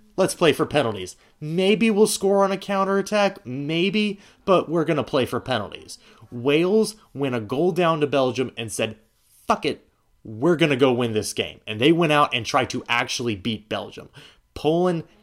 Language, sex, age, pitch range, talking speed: English, male, 20-39, 105-140 Hz, 185 wpm